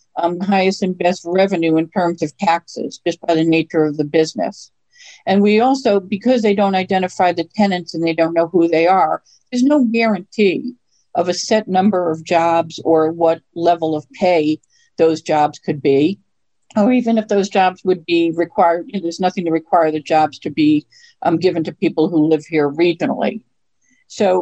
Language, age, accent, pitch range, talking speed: English, 50-69, American, 170-205 Hz, 190 wpm